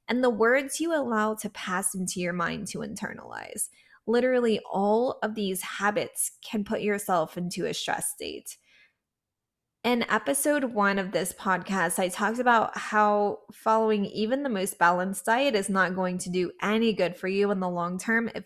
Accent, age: American, 20-39